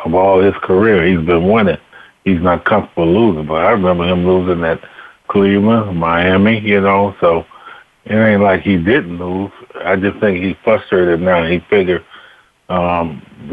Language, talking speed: English, 165 wpm